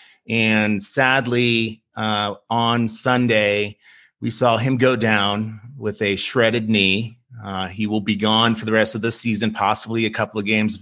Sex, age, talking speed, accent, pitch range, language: male, 30-49, 165 wpm, American, 110-125 Hz, English